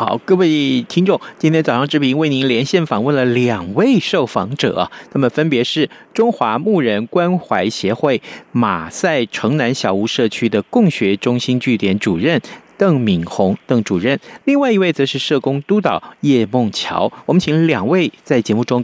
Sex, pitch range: male, 125-190 Hz